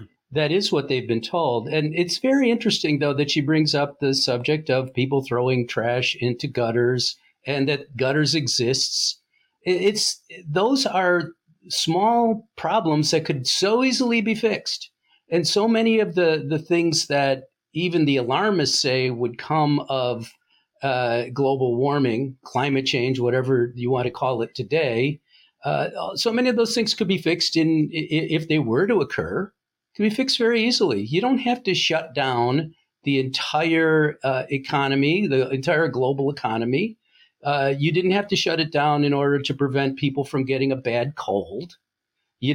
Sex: male